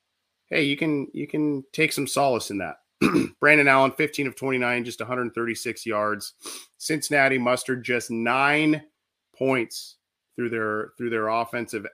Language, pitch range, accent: English, 110-130 Hz, American